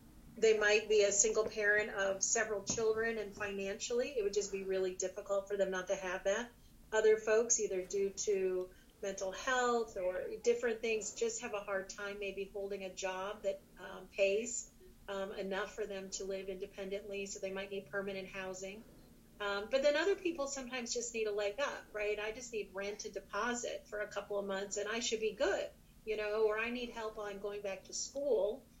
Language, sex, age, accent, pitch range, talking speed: English, female, 40-59, American, 195-220 Hz, 200 wpm